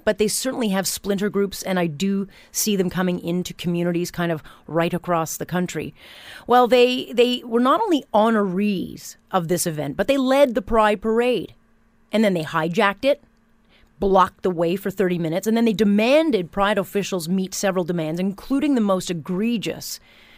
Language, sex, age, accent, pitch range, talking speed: English, female, 30-49, American, 180-225 Hz, 175 wpm